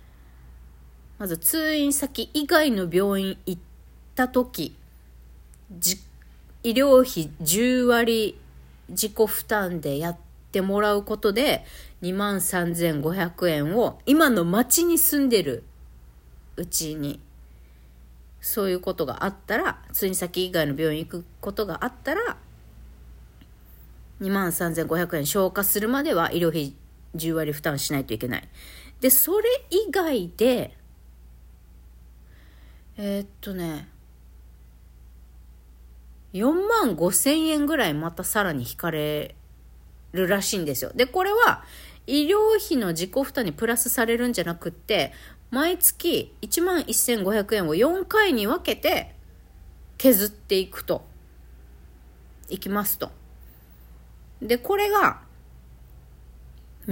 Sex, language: female, Japanese